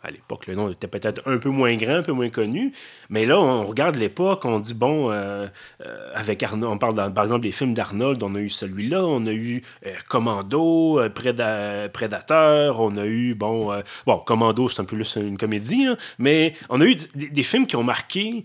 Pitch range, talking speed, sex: 110-140 Hz, 230 wpm, male